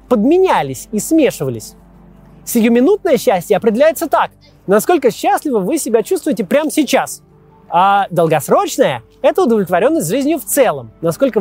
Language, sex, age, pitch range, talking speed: Russian, male, 30-49, 185-275 Hz, 115 wpm